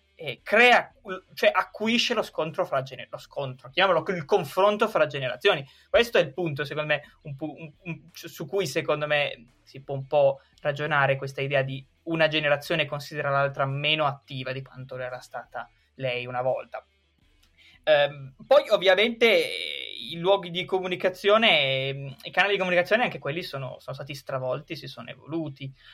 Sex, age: male, 20-39